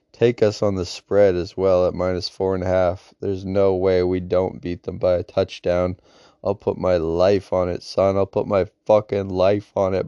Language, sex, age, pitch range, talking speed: English, male, 20-39, 90-100 Hz, 220 wpm